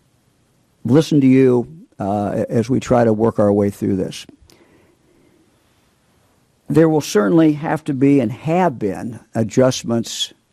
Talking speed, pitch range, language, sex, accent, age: 130 wpm, 110-140 Hz, English, male, American, 50-69